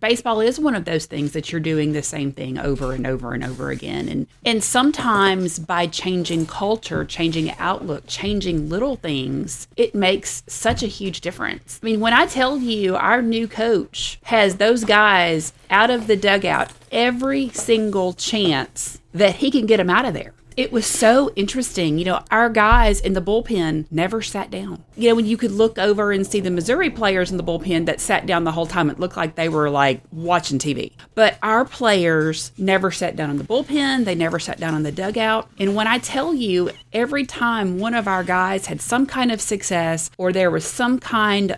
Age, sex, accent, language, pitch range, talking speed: 30-49, female, American, English, 165-225 Hz, 205 wpm